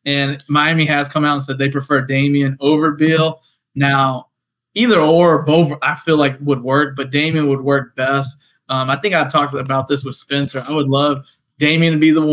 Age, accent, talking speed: 20-39, American, 205 wpm